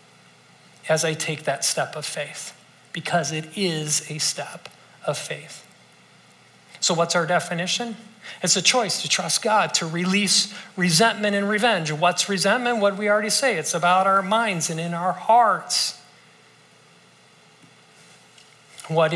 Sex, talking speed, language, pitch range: male, 140 wpm, English, 160-200 Hz